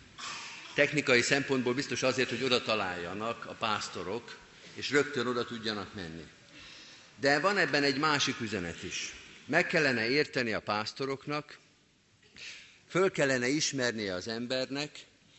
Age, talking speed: 50-69, 120 wpm